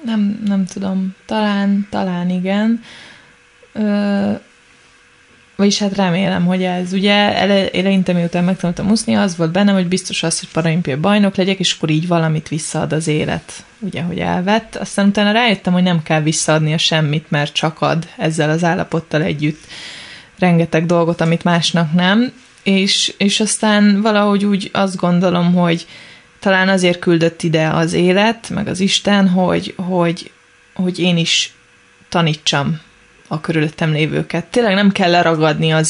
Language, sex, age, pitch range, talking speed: Hungarian, female, 20-39, 165-195 Hz, 150 wpm